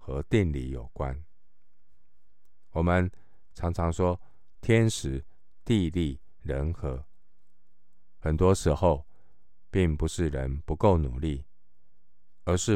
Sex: male